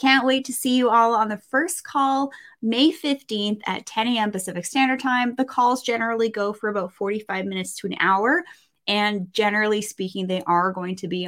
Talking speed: 195 wpm